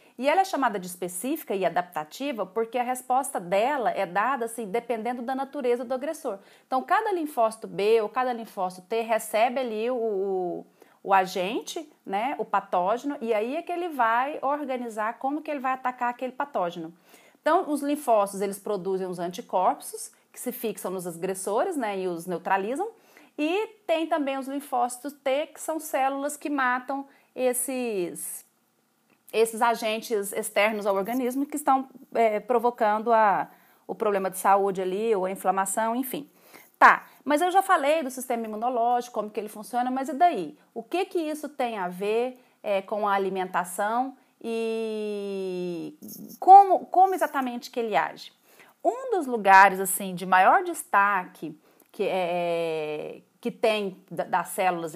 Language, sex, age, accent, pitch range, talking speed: Portuguese, female, 30-49, Brazilian, 200-275 Hz, 155 wpm